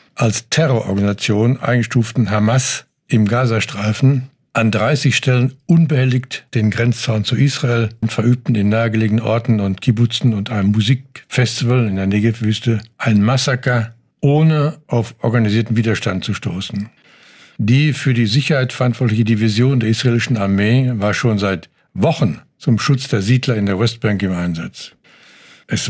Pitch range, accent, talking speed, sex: 115-135 Hz, German, 135 wpm, male